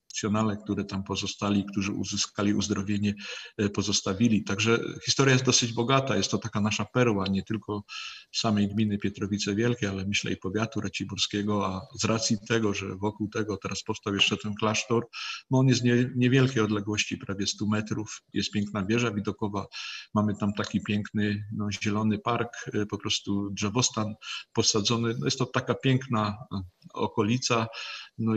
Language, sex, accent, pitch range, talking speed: Polish, male, native, 100-115 Hz, 150 wpm